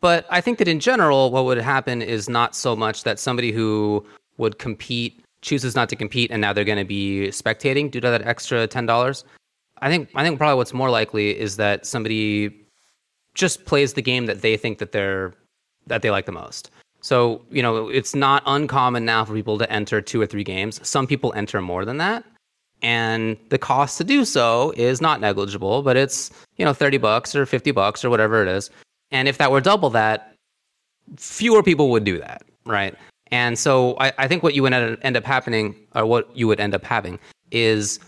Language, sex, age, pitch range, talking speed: English, male, 30-49, 110-135 Hz, 210 wpm